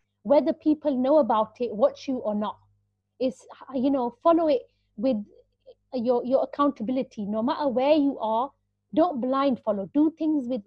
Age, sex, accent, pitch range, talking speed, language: 30-49, female, Indian, 215-290 Hz, 165 wpm, English